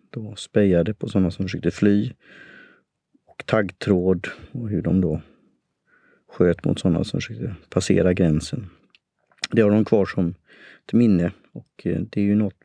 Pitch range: 90-110 Hz